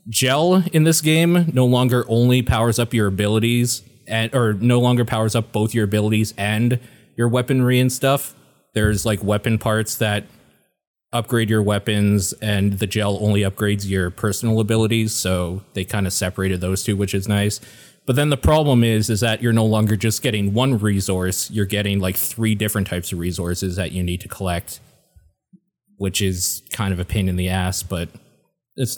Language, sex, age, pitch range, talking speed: English, male, 20-39, 100-125 Hz, 185 wpm